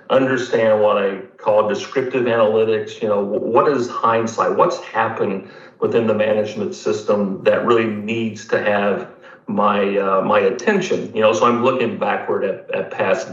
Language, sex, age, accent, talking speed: English, male, 50-69, American, 160 wpm